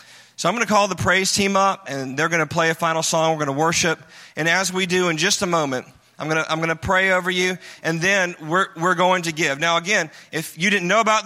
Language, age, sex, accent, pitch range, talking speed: English, 30-49, male, American, 150-190 Hz, 275 wpm